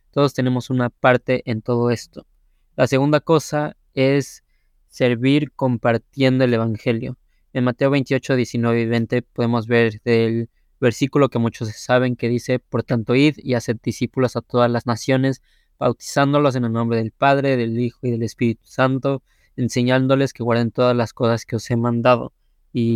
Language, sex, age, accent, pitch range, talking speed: Spanish, male, 20-39, Mexican, 115-135 Hz, 165 wpm